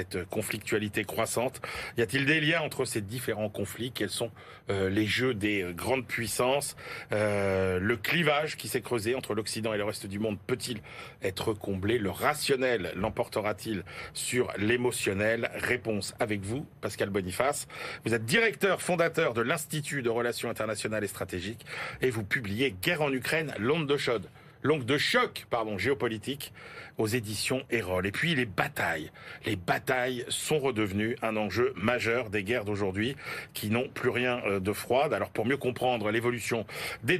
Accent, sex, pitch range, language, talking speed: French, male, 105-140 Hz, French, 160 wpm